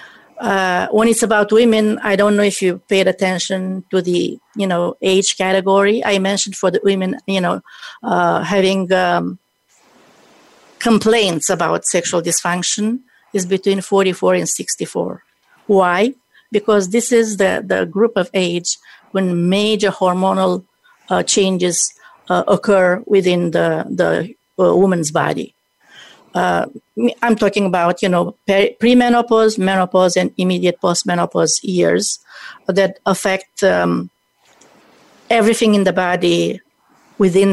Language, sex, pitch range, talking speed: English, female, 175-210 Hz, 130 wpm